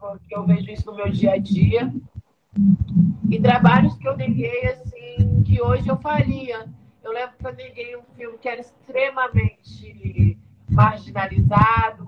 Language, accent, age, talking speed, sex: Portuguese, Brazilian, 20-39, 140 wpm, female